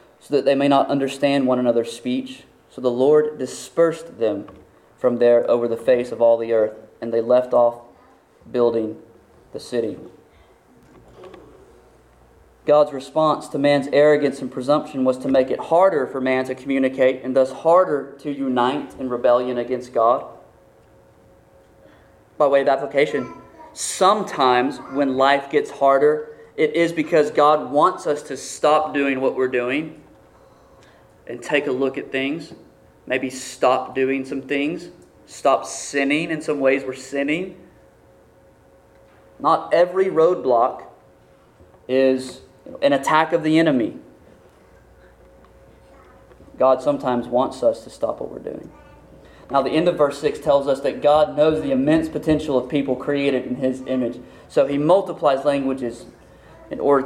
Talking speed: 145 wpm